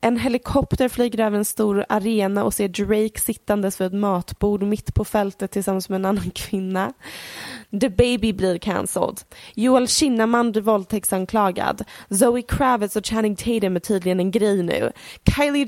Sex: female